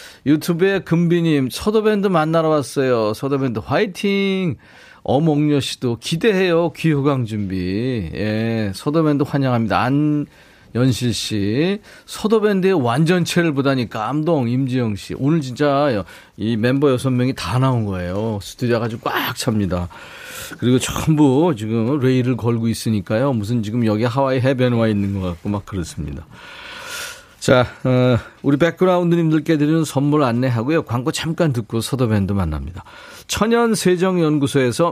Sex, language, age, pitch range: male, Korean, 40-59, 120-165 Hz